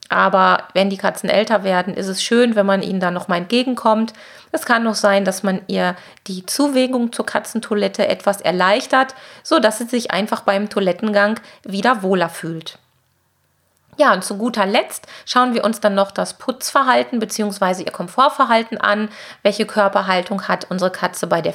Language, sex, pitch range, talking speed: German, female, 200-245 Hz, 165 wpm